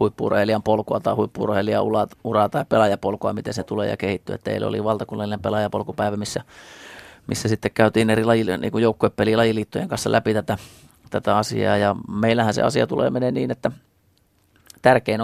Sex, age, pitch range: male, 30-49, 105-115 Hz